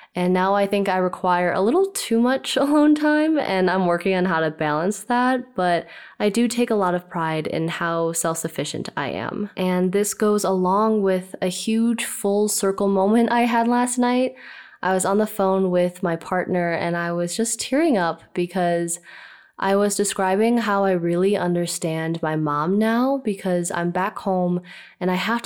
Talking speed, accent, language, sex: 185 wpm, American, English, female